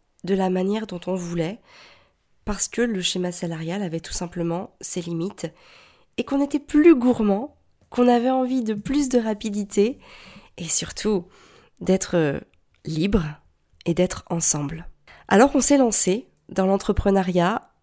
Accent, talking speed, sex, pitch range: French, 140 wpm, female, 175-220 Hz